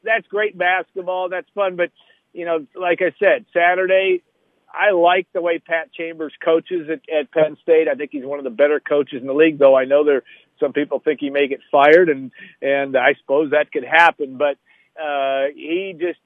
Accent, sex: American, male